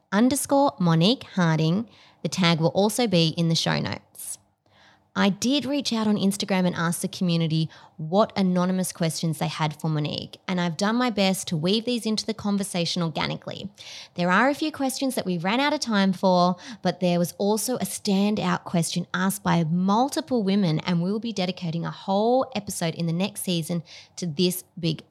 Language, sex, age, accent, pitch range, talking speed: English, female, 20-39, Australian, 170-220 Hz, 190 wpm